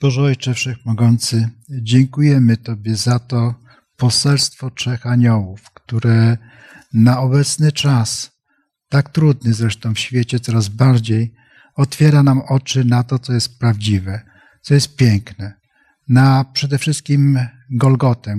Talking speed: 120 wpm